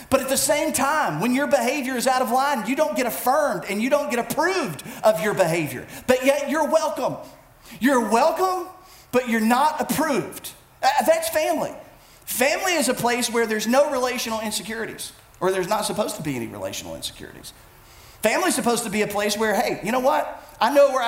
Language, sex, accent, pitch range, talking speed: English, male, American, 220-280 Hz, 195 wpm